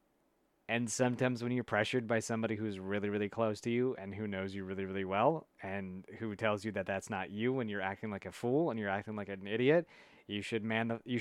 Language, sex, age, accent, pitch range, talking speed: English, male, 30-49, American, 100-125 Hz, 240 wpm